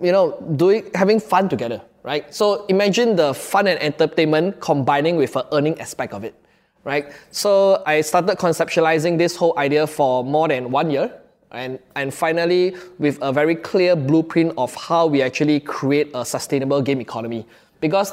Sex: male